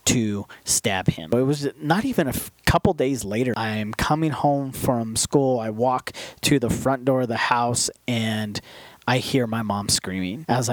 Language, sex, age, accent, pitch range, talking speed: English, male, 30-49, American, 115-145 Hz, 180 wpm